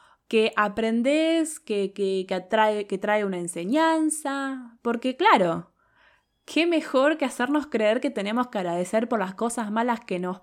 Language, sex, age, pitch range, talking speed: Spanish, female, 20-39, 195-265 Hz, 155 wpm